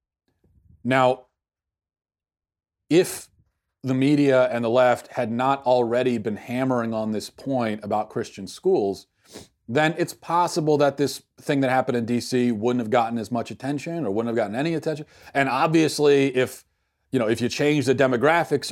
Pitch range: 105-130 Hz